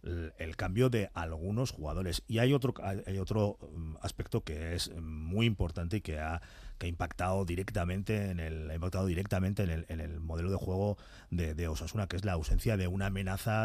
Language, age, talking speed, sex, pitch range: Spanish, 40-59, 165 wpm, male, 85-115 Hz